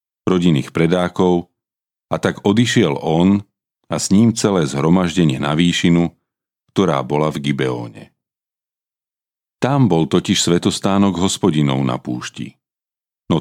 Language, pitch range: Slovak, 80-100 Hz